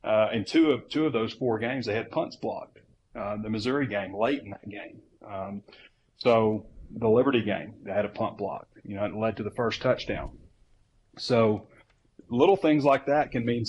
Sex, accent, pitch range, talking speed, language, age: male, American, 105-120 Hz, 200 wpm, English, 30-49